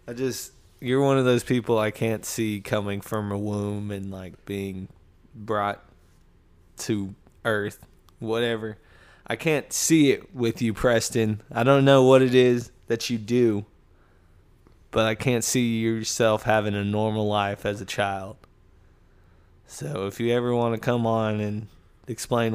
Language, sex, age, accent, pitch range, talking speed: English, male, 20-39, American, 95-120 Hz, 155 wpm